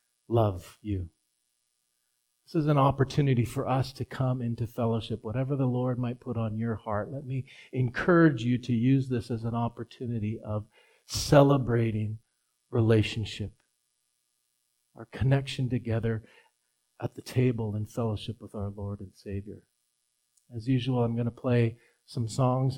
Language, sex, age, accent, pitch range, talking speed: English, male, 40-59, American, 115-130 Hz, 140 wpm